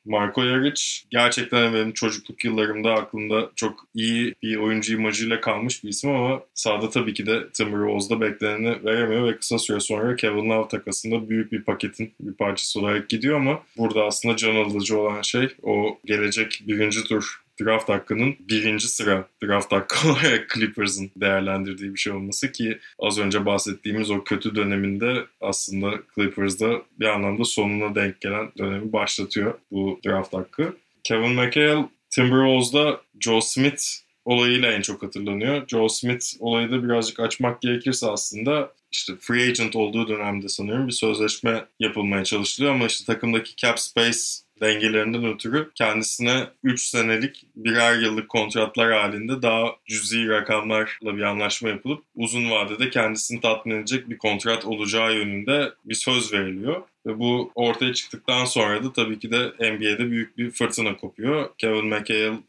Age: 20-39